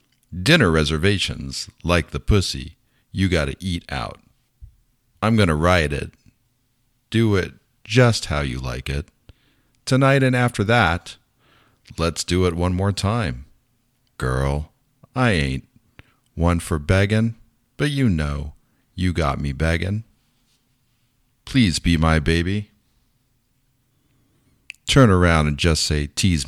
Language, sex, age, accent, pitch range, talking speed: English, male, 50-69, American, 75-120 Hz, 120 wpm